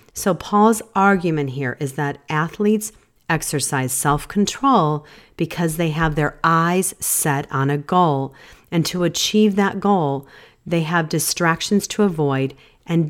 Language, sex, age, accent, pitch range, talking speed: English, female, 40-59, American, 150-200 Hz, 135 wpm